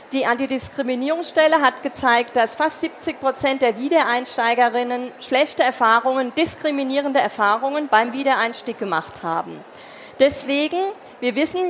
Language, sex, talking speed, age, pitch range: German, female, 110 wpm, 40-59, 230-295 Hz